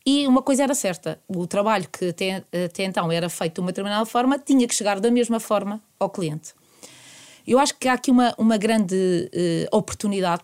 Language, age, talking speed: Portuguese, 20-39, 190 wpm